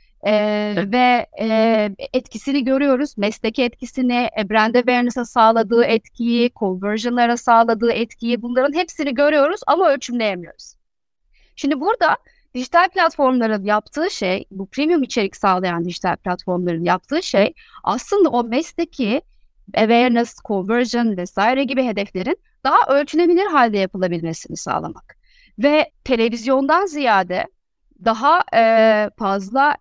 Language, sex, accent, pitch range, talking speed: Turkish, female, native, 210-275 Hz, 105 wpm